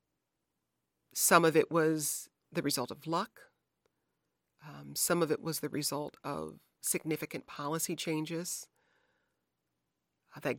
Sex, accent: female, American